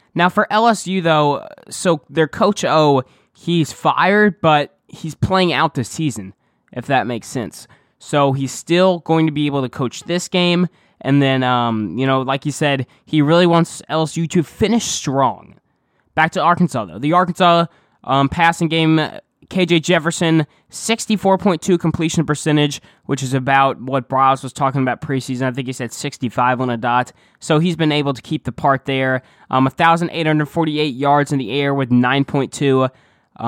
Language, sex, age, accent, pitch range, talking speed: English, male, 10-29, American, 130-165 Hz, 170 wpm